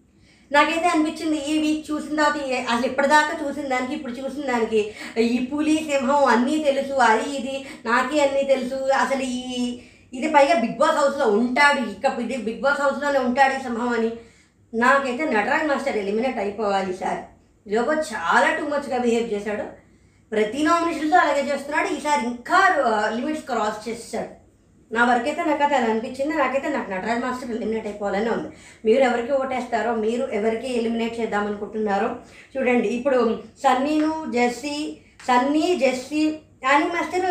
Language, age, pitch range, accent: Telugu, 20-39, 235-300 Hz, native